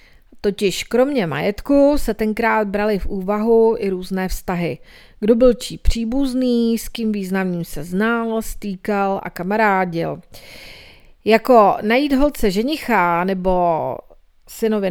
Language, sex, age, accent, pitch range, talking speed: Czech, female, 40-59, native, 185-225 Hz, 115 wpm